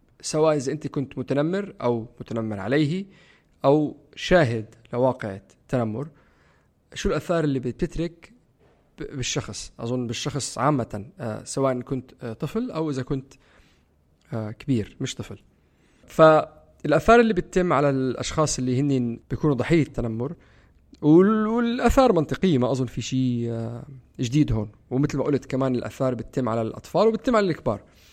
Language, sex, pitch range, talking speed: Arabic, male, 115-145 Hz, 125 wpm